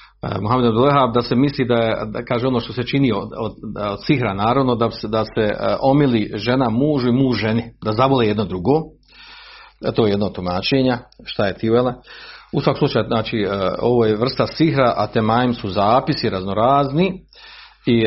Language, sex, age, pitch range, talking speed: Croatian, male, 40-59, 110-145 Hz, 175 wpm